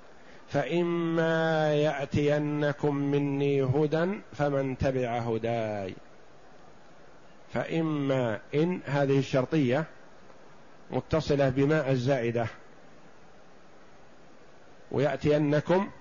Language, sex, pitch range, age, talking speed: Arabic, male, 130-165 Hz, 50-69, 55 wpm